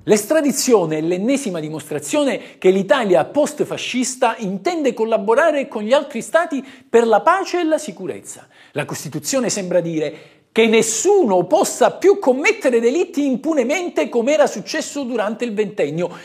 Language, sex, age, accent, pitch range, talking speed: Italian, male, 50-69, native, 175-285 Hz, 135 wpm